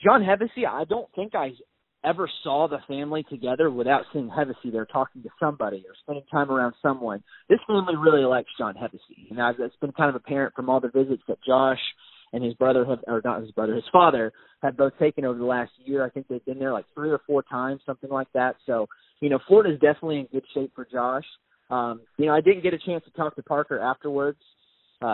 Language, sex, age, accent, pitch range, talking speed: English, male, 20-39, American, 125-145 Hz, 230 wpm